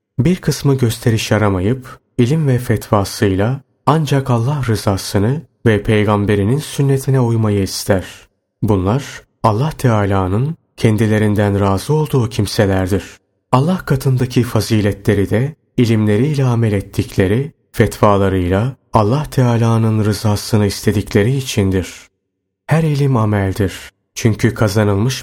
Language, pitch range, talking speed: Turkish, 100-130 Hz, 100 wpm